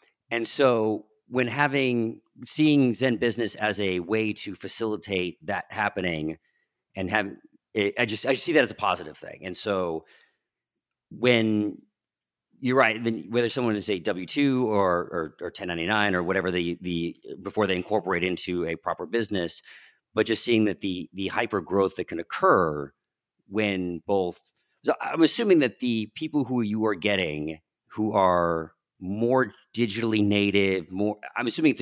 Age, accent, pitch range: 40-59, American, 90-115 Hz